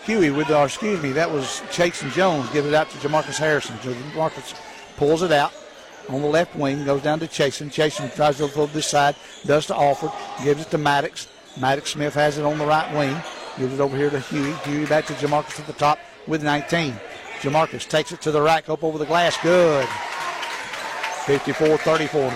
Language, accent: English, American